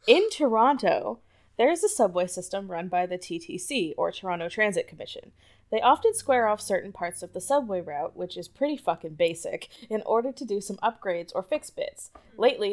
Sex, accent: female, American